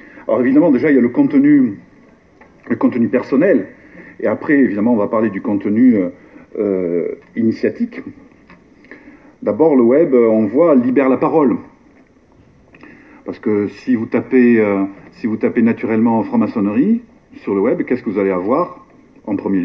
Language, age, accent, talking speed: French, 50-69, French, 155 wpm